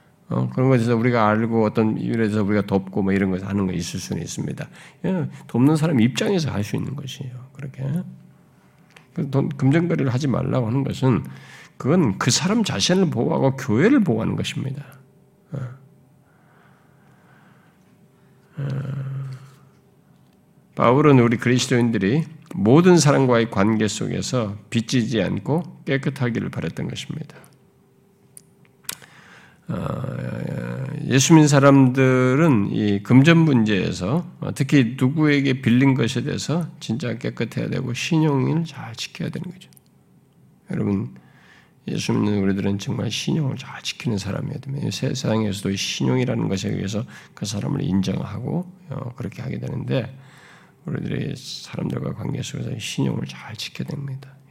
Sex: male